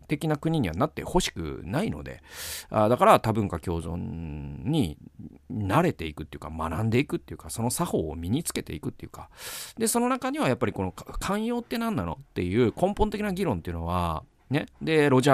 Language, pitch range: Japanese, 90-130 Hz